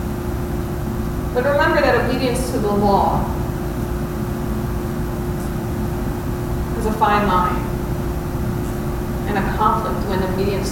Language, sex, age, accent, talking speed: English, female, 30-49, American, 90 wpm